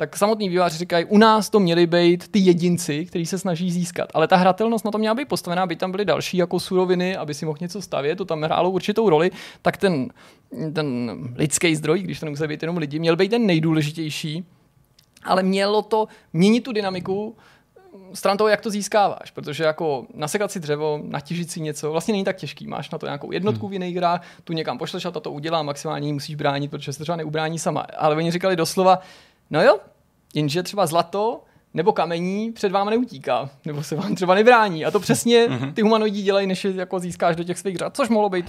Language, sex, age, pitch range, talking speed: Czech, male, 20-39, 155-200 Hz, 205 wpm